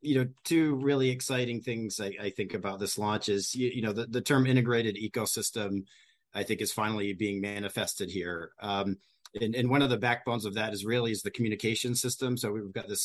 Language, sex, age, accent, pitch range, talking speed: English, male, 40-59, American, 105-125 Hz, 215 wpm